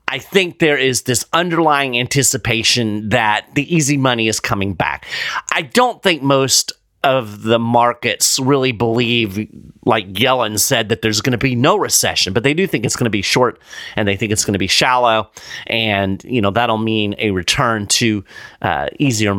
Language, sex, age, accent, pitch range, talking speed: English, male, 40-59, American, 105-135 Hz, 185 wpm